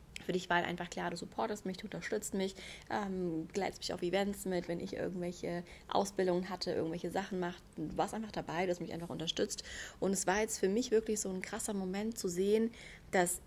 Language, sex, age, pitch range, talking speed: German, female, 20-39, 175-200 Hz, 210 wpm